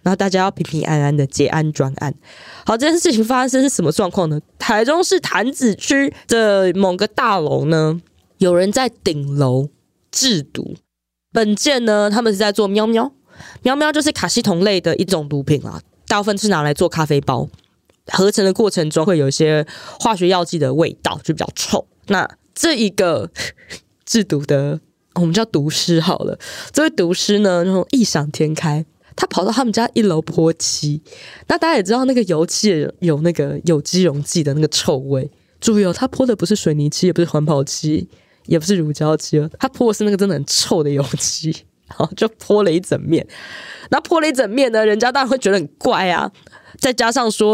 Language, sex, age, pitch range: Chinese, female, 20-39, 155-225 Hz